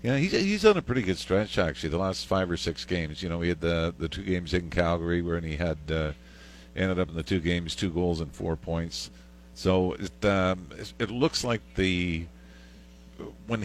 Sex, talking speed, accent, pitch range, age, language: male, 210 wpm, American, 80-95 Hz, 50-69, English